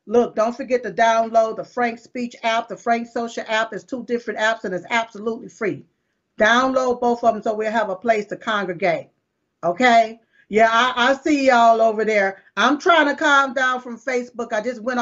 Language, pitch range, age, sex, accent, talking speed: English, 225-275 Hz, 40-59, female, American, 200 wpm